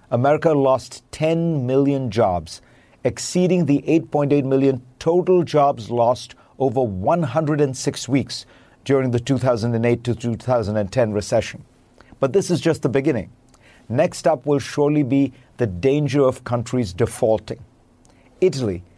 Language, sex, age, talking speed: English, male, 50-69, 120 wpm